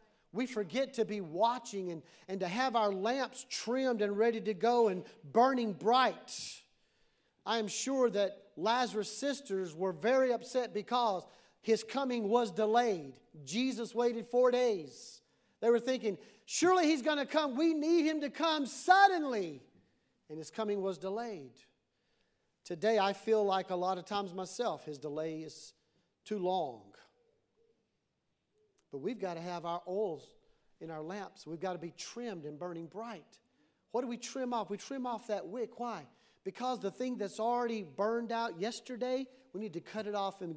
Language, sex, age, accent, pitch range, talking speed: English, male, 40-59, American, 200-265 Hz, 170 wpm